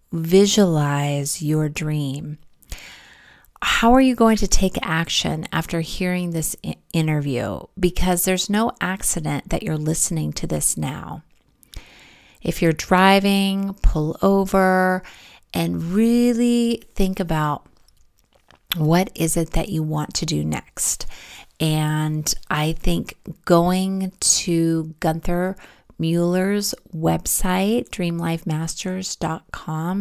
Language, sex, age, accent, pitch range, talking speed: English, female, 30-49, American, 160-195 Hz, 100 wpm